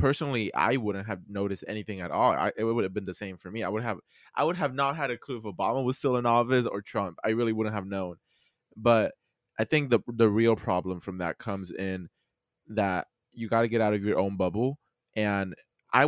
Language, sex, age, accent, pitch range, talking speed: English, male, 20-39, American, 95-115 Hz, 235 wpm